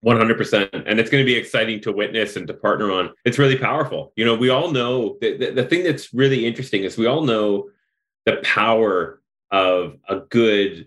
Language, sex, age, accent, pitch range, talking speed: English, male, 30-49, American, 105-135 Hz, 200 wpm